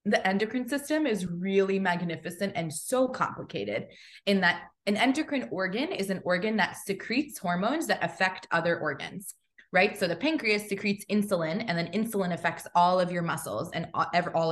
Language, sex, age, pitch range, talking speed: English, female, 20-39, 170-215 Hz, 165 wpm